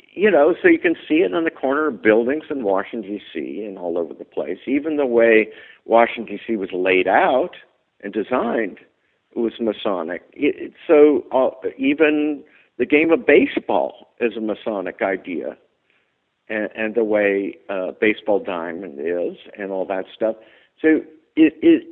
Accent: American